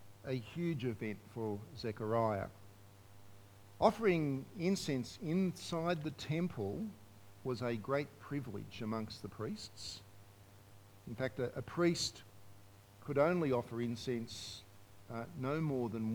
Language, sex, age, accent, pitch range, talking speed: English, male, 50-69, Australian, 100-145 Hz, 110 wpm